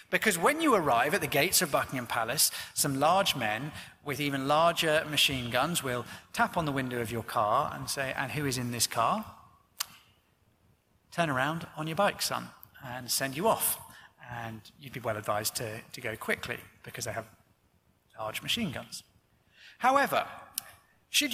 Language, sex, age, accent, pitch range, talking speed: English, male, 30-49, British, 120-180 Hz, 170 wpm